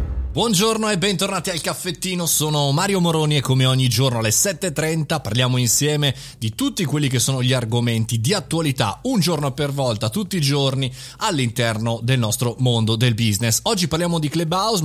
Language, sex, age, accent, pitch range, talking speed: Italian, male, 30-49, native, 120-165 Hz, 170 wpm